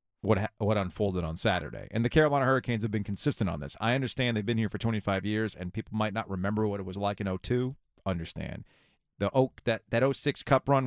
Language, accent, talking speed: English, American, 225 wpm